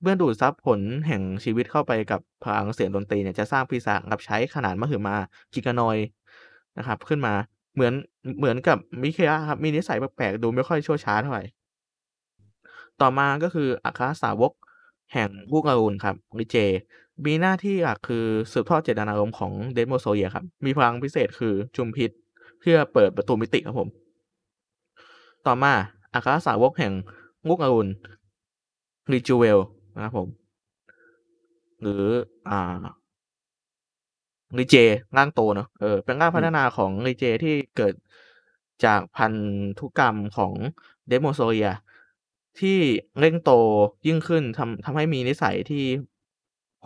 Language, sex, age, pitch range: Thai, male, 20-39, 105-145 Hz